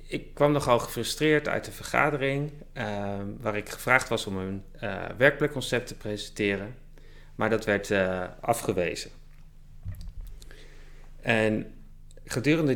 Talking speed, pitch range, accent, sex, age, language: 120 wpm, 100-120 Hz, Dutch, male, 30-49, Dutch